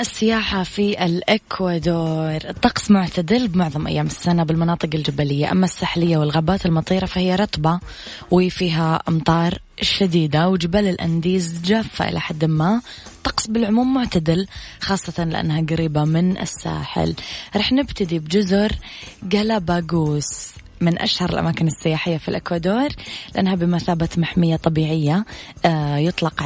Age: 20-39